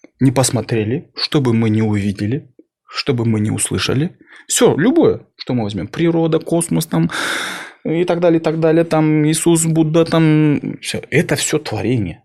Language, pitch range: Russian, 110-145 Hz